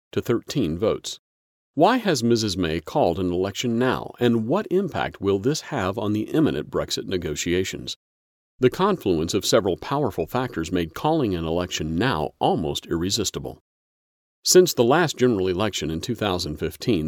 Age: 40-59